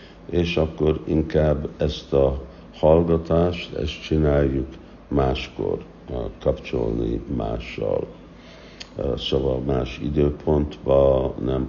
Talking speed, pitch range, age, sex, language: 75 wpm, 65-80 Hz, 60-79, male, Hungarian